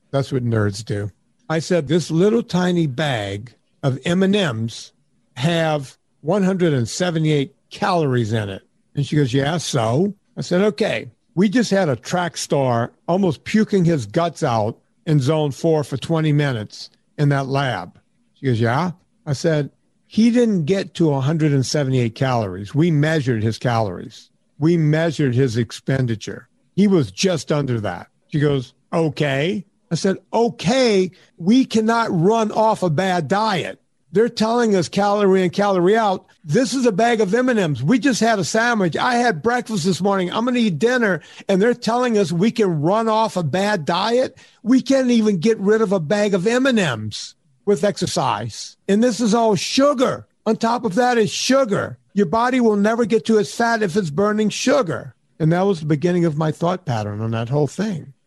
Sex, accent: male, American